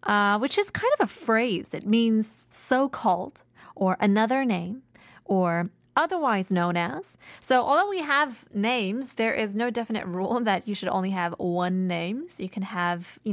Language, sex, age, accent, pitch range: Korean, female, 20-39, American, 185-240 Hz